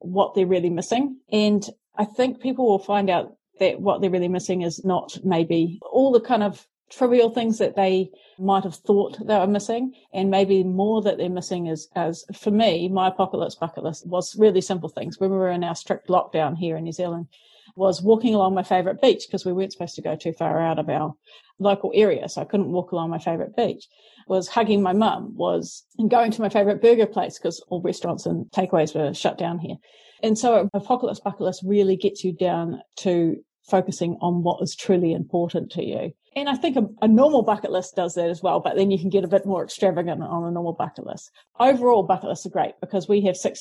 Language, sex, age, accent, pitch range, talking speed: English, female, 40-59, Australian, 175-210 Hz, 225 wpm